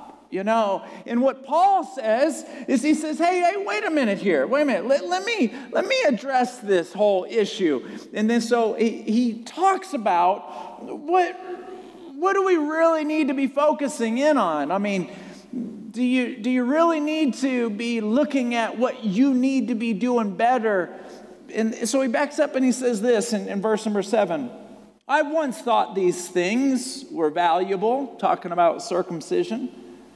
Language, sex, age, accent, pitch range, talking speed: English, male, 40-59, American, 225-295 Hz, 175 wpm